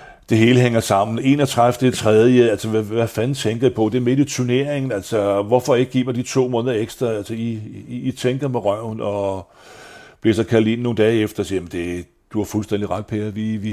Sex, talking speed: male, 225 wpm